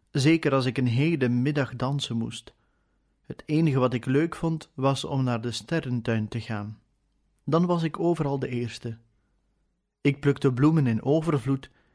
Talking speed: 160 wpm